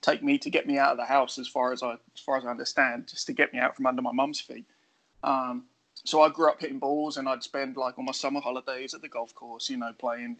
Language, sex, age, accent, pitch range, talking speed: English, male, 20-39, British, 130-165 Hz, 290 wpm